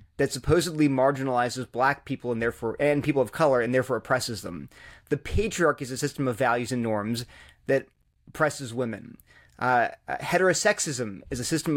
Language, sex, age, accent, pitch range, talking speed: English, male, 30-49, American, 125-150 Hz, 165 wpm